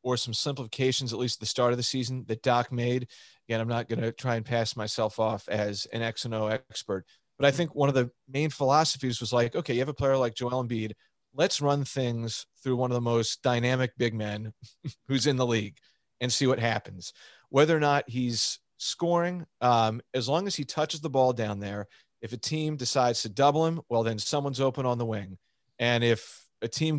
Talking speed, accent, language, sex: 220 wpm, American, English, male